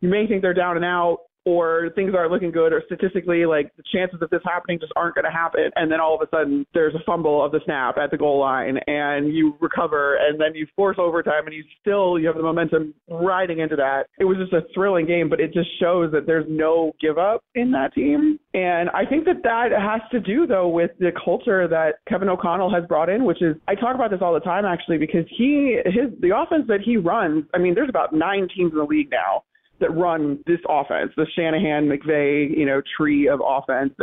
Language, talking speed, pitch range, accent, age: English, 235 wpm, 155-195 Hz, American, 30-49